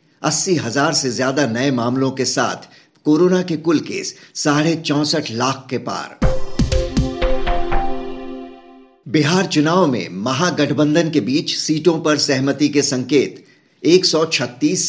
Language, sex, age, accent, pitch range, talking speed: Hindi, male, 50-69, native, 130-160 Hz, 115 wpm